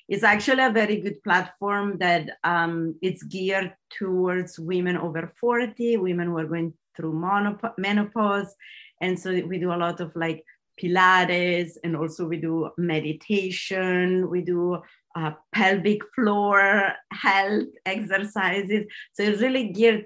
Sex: female